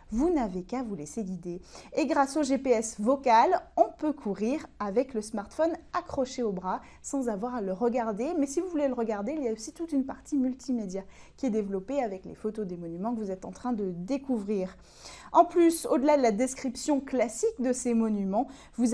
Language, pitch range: French, 220-295 Hz